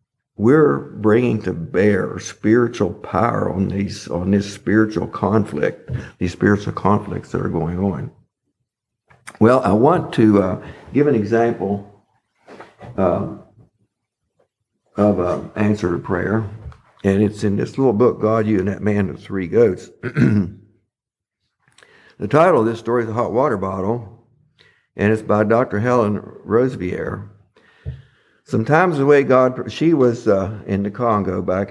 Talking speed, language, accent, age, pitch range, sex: 140 wpm, English, American, 60-79, 95-115 Hz, male